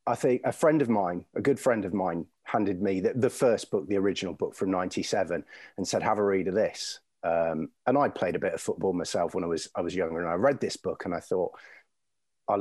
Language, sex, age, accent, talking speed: English, male, 30-49, British, 250 wpm